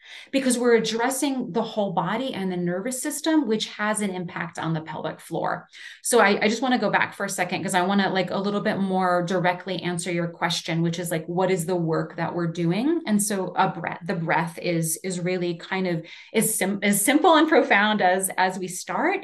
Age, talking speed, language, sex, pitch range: 30-49, 230 wpm, English, female, 180-235 Hz